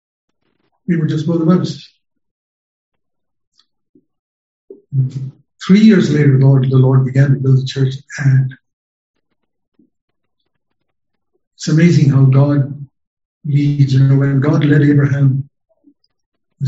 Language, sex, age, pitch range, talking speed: English, male, 60-79, 135-160 Hz, 110 wpm